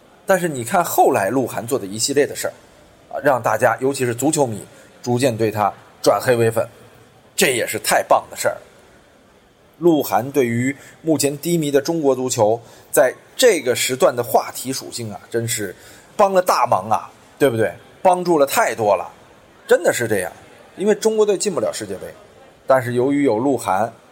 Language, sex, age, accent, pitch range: Chinese, male, 20-39, native, 115-175 Hz